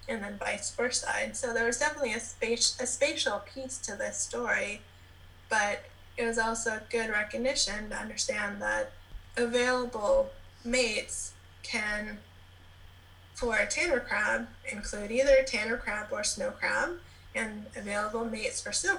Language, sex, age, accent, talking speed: English, female, 20-39, American, 140 wpm